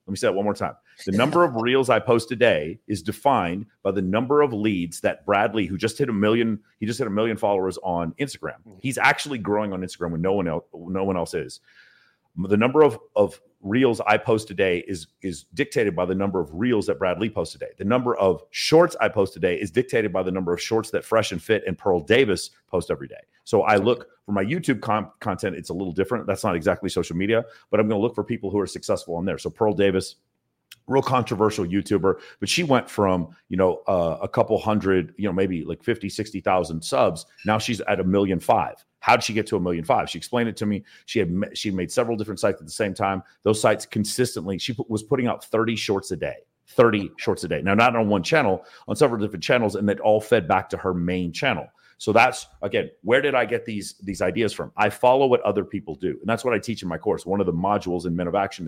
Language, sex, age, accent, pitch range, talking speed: English, male, 40-59, American, 95-115 Hz, 245 wpm